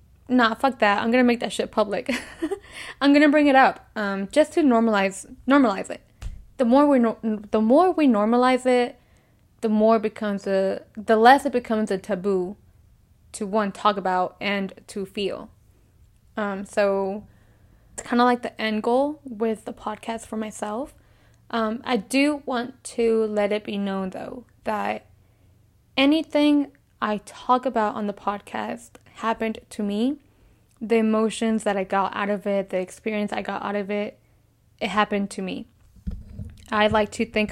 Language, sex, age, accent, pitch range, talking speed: English, female, 10-29, American, 200-240 Hz, 170 wpm